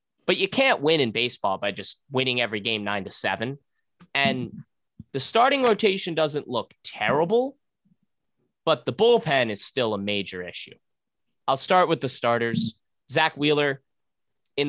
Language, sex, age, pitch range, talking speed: English, male, 20-39, 105-145 Hz, 150 wpm